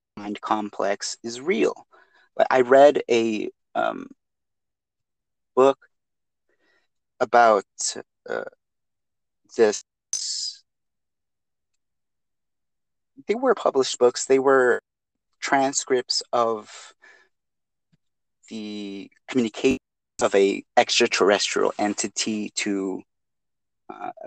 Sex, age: male, 30-49